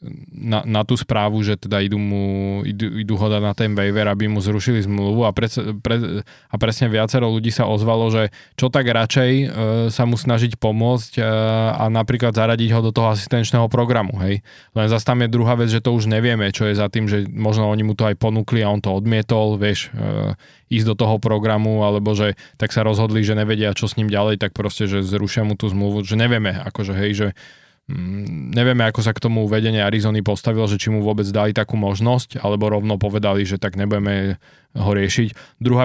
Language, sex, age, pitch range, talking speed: Slovak, male, 20-39, 105-115 Hz, 205 wpm